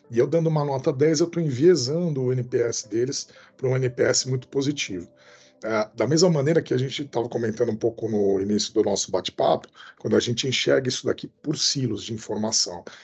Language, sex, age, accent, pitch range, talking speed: Portuguese, male, 40-59, Brazilian, 110-145 Hz, 195 wpm